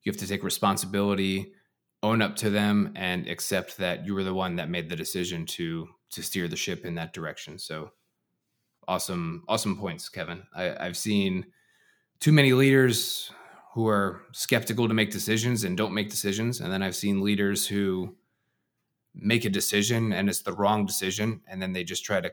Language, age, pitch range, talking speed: English, 20-39, 95-115 Hz, 185 wpm